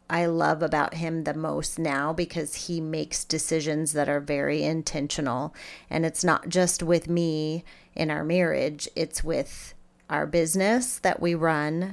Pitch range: 155-175 Hz